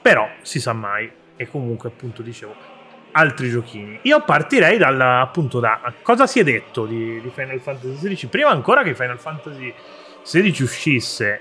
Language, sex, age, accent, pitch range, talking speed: Italian, male, 30-49, native, 120-145 Hz, 160 wpm